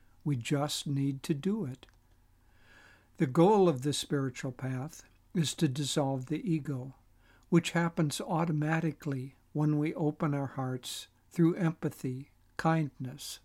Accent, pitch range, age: American, 120-155 Hz, 60-79